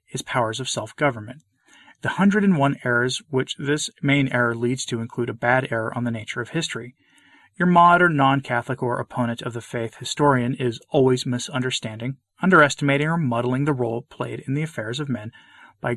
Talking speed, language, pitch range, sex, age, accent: 175 wpm, English, 120-145 Hz, male, 30-49, American